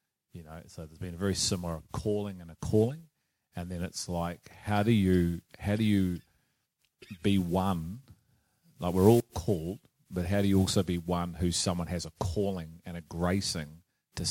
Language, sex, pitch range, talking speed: English, male, 80-95 Hz, 185 wpm